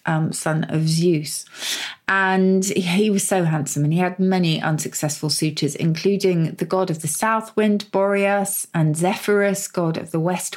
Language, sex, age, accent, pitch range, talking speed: English, female, 30-49, British, 155-195 Hz, 170 wpm